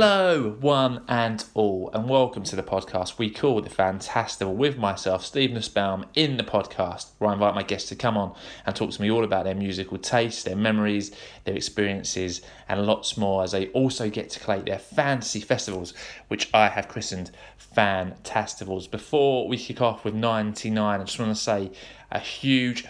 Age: 20-39